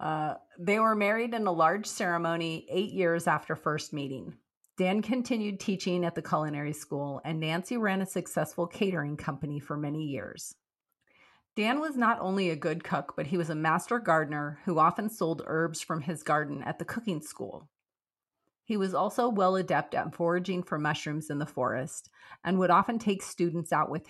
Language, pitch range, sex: English, 160-200 Hz, female